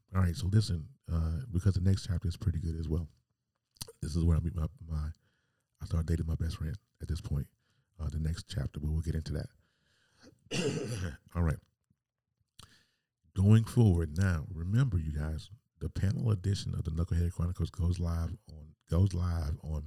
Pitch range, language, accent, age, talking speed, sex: 85-105 Hz, English, American, 40-59, 180 wpm, male